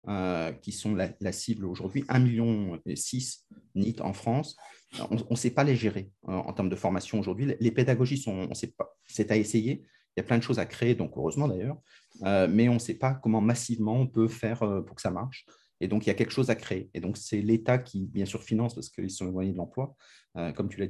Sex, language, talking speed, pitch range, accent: male, French, 260 wpm, 100-125 Hz, French